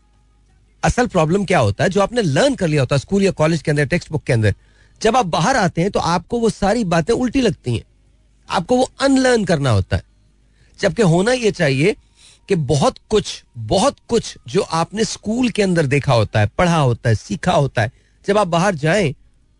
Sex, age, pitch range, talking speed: male, 40-59, 120-195 Hz, 205 wpm